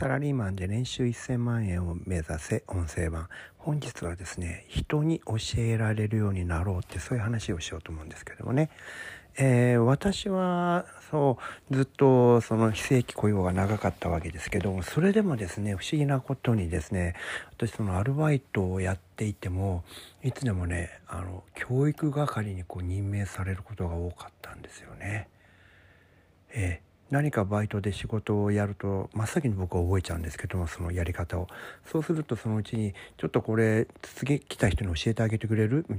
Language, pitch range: Japanese, 90-130 Hz